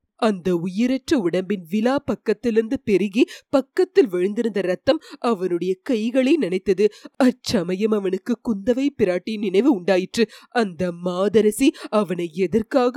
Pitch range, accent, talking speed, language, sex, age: 195-265 Hz, native, 95 wpm, Tamil, female, 30-49